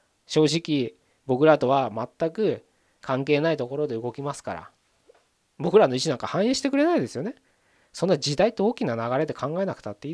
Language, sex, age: Japanese, male, 20-39